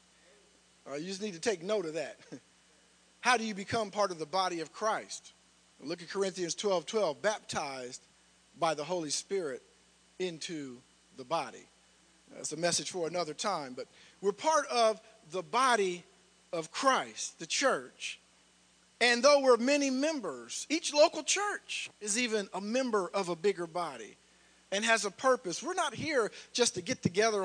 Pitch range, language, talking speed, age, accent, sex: 165-230 Hz, English, 165 wpm, 50-69, American, male